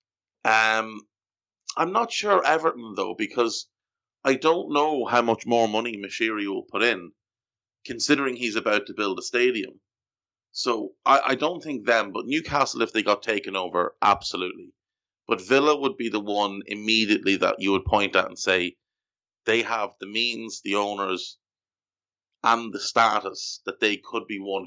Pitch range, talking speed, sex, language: 95-110 Hz, 165 wpm, male, English